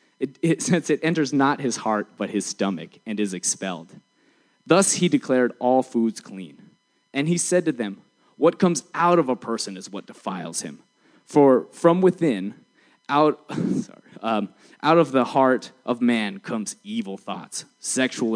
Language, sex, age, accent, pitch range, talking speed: English, male, 20-39, American, 115-180 Hz, 165 wpm